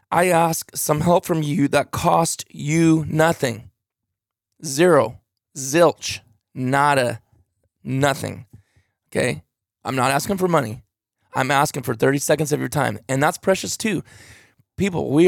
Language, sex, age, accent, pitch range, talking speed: English, male, 20-39, American, 120-160 Hz, 135 wpm